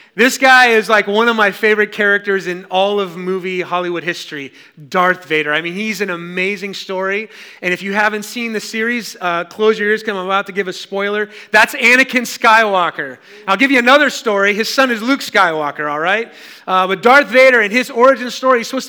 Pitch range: 175-230 Hz